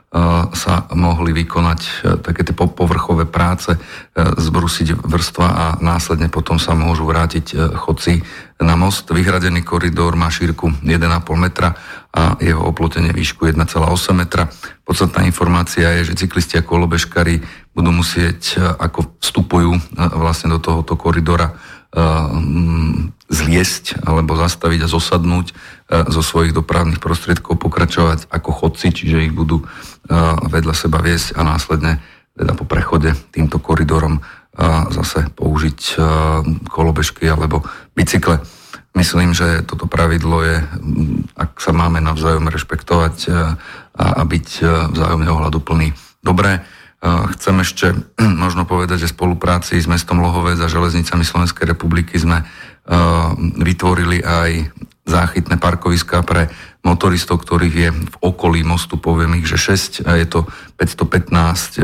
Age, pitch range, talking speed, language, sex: 40-59, 80-85 Hz, 120 wpm, Slovak, male